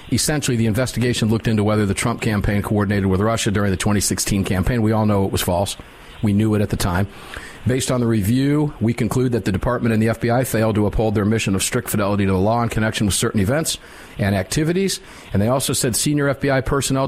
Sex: male